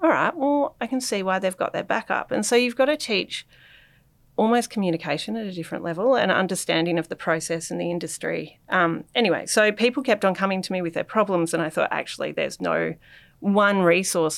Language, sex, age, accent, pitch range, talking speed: English, female, 30-49, Australian, 170-220 Hz, 215 wpm